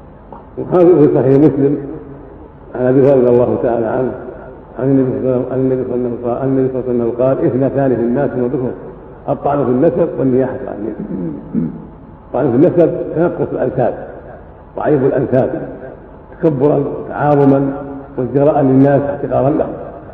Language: Arabic